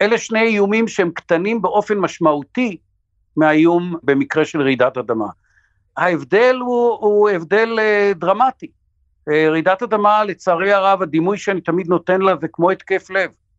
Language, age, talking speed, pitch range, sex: Hebrew, 60-79, 130 wpm, 140-200 Hz, male